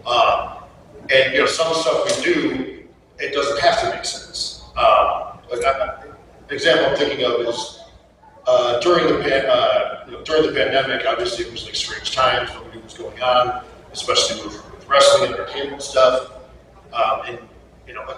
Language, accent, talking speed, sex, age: English, American, 170 wpm, male, 40-59